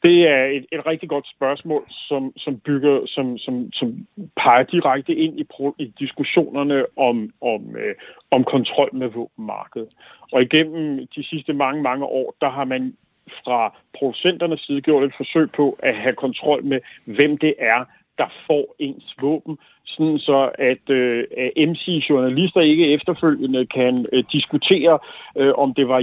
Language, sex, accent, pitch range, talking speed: Danish, male, native, 135-160 Hz, 145 wpm